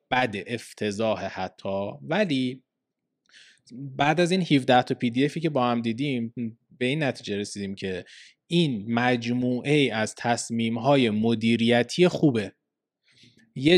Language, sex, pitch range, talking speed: Persian, male, 115-140 Hz, 120 wpm